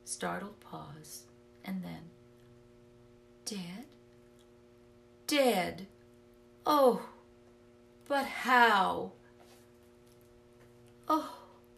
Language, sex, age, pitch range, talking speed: English, female, 40-59, 120-200 Hz, 50 wpm